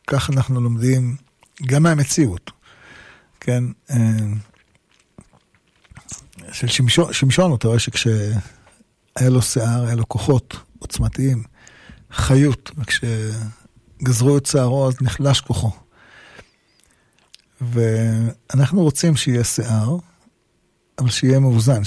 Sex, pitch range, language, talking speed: male, 115-140 Hz, Hebrew, 90 wpm